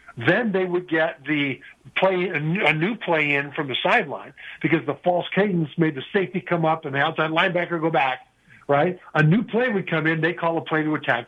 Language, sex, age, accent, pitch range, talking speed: English, male, 50-69, American, 145-175 Hz, 220 wpm